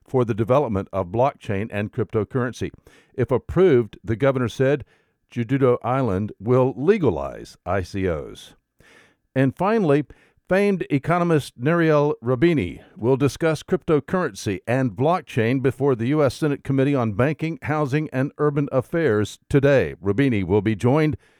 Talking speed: 125 wpm